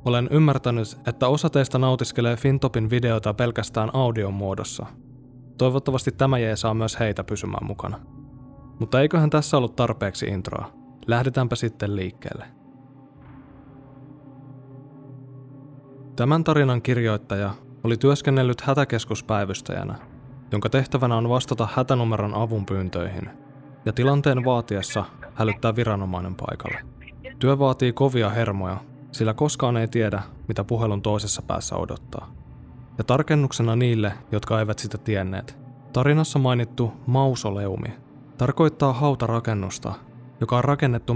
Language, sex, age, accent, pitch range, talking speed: Finnish, male, 20-39, native, 110-135 Hz, 110 wpm